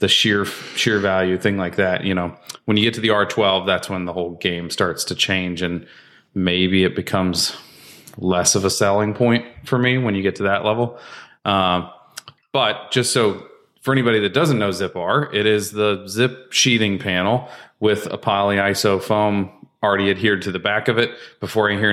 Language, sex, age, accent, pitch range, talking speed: English, male, 30-49, American, 95-110 Hz, 200 wpm